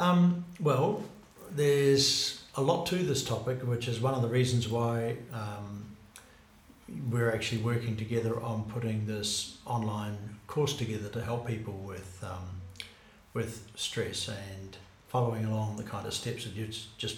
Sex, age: male, 60-79